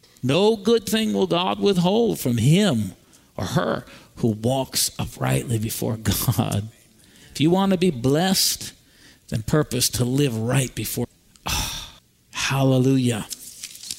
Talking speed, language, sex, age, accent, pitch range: 120 wpm, English, male, 50-69, American, 115-165 Hz